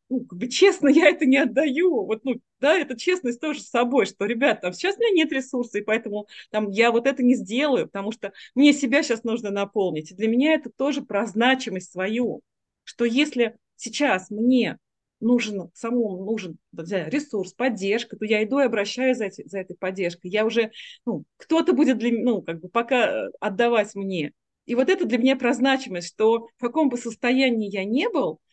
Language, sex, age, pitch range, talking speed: Russian, female, 30-49, 205-260 Hz, 190 wpm